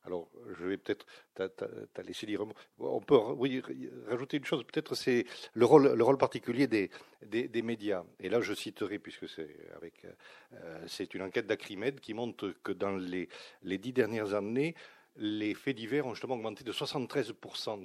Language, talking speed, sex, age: French, 175 wpm, male, 50-69